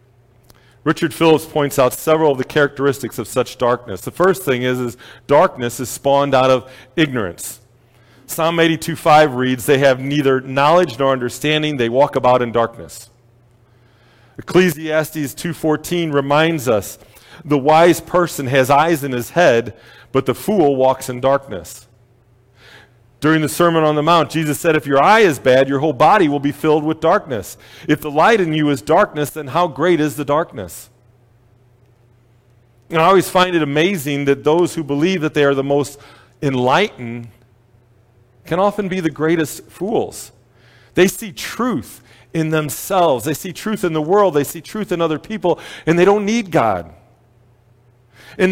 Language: English